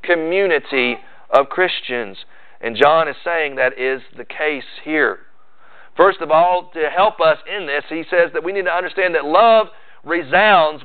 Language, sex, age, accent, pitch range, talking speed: English, male, 40-59, American, 165-215 Hz, 165 wpm